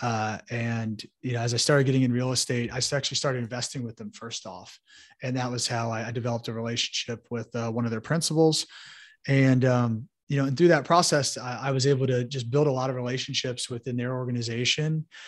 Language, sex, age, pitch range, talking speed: English, male, 30-49, 125-170 Hz, 220 wpm